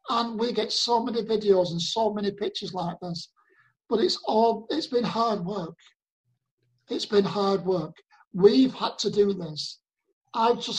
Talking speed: 165 wpm